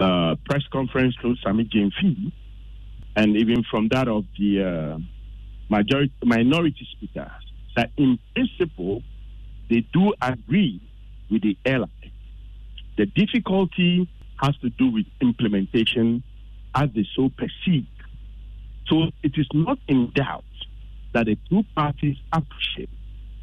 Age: 50-69